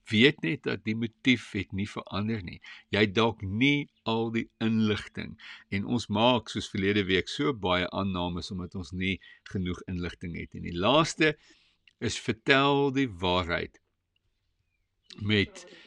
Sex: male